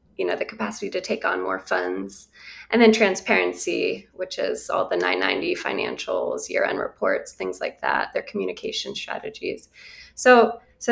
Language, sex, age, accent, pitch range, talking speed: English, female, 20-39, American, 185-230 Hz, 155 wpm